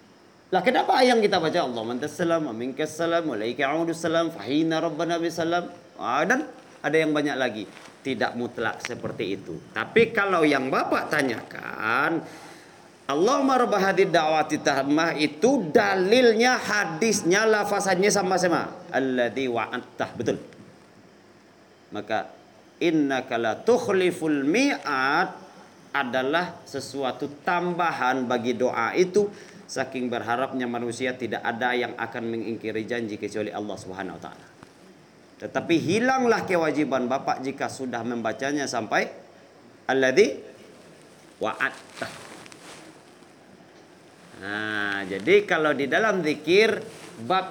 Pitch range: 130-210 Hz